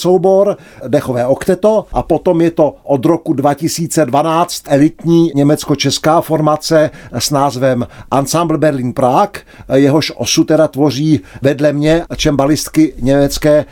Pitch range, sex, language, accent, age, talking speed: 140-160 Hz, male, Czech, native, 50-69, 115 wpm